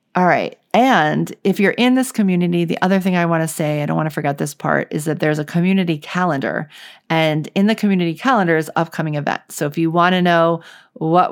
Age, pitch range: 40-59, 160-190 Hz